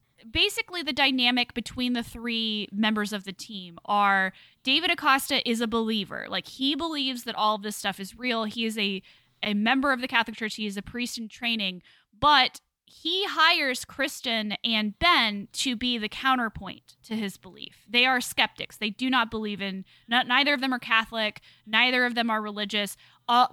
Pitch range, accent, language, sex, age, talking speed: 205-255 Hz, American, English, female, 10-29, 185 wpm